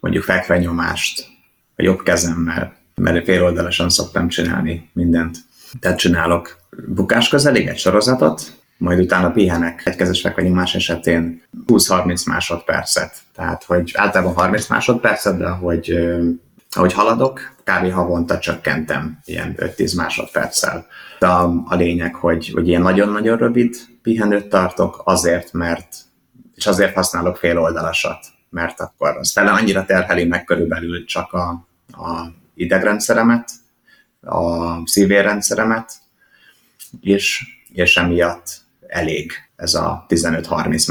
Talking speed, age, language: 110 wpm, 30-49, Hungarian